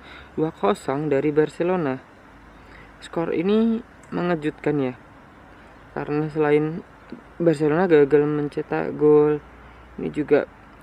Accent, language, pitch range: native, Indonesian, 135-165 Hz